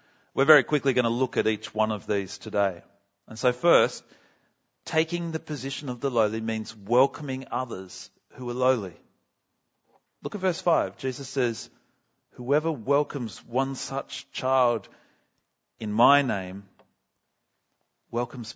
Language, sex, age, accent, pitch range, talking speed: English, male, 40-59, Australian, 115-160 Hz, 135 wpm